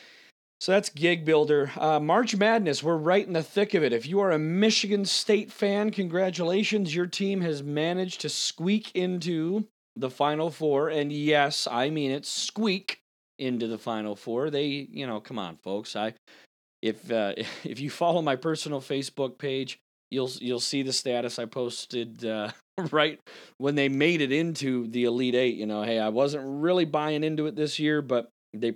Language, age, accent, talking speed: English, 30-49, American, 185 wpm